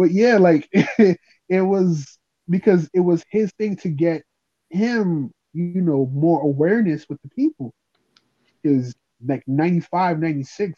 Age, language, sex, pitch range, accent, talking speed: 20-39, English, male, 125-175 Hz, American, 140 wpm